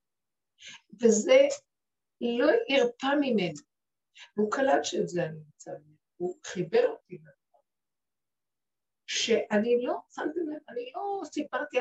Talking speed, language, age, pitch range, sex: 95 wpm, Hebrew, 60-79, 210-295 Hz, female